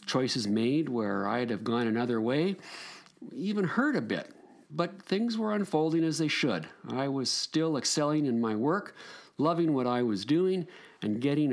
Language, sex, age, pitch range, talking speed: English, male, 50-69, 120-185 Hz, 170 wpm